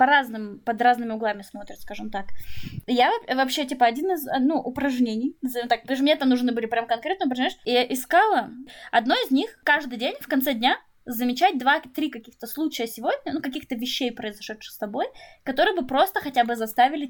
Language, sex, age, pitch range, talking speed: Russian, female, 20-39, 230-295 Hz, 170 wpm